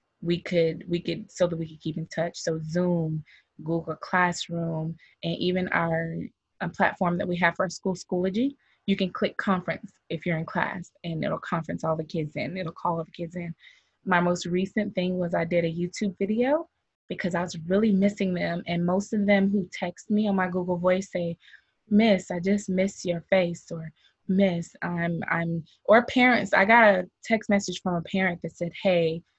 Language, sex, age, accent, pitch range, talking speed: English, female, 20-39, American, 170-195 Hz, 200 wpm